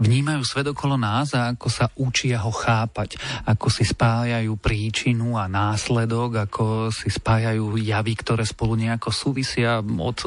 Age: 40-59